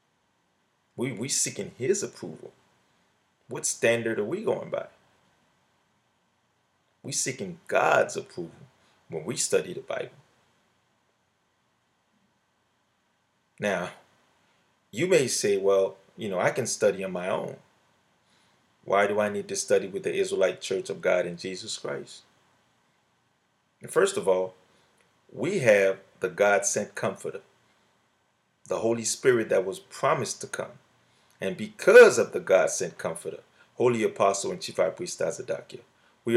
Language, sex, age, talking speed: English, male, 30-49, 130 wpm